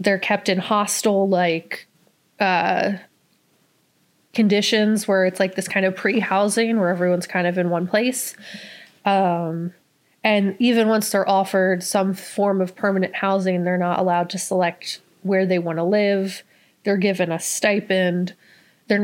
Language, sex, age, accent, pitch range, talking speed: English, female, 20-39, American, 185-210 Hz, 150 wpm